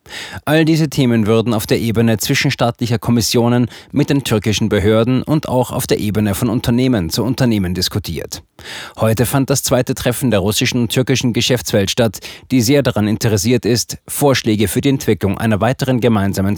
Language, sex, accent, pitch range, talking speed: German, male, German, 110-130 Hz, 165 wpm